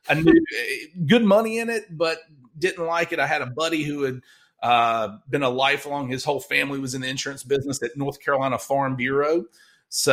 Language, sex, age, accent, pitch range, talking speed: English, male, 30-49, American, 130-170 Hz, 200 wpm